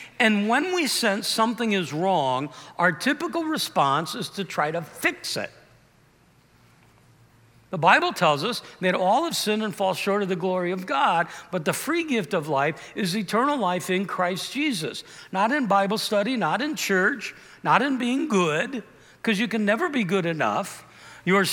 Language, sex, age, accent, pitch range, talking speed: English, male, 60-79, American, 175-235 Hz, 175 wpm